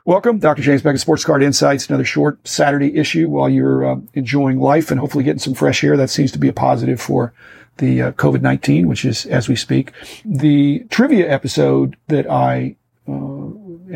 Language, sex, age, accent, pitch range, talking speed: English, male, 50-69, American, 130-155 Hz, 190 wpm